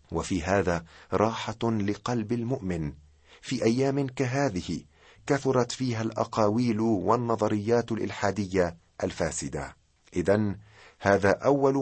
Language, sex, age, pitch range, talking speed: Arabic, male, 50-69, 90-120 Hz, 85 wpm